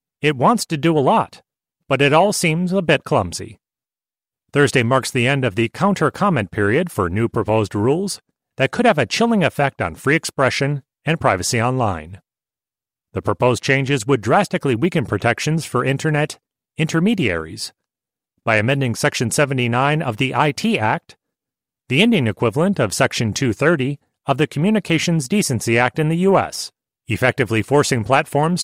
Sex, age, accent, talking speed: male, 30-49, American, 150 wpm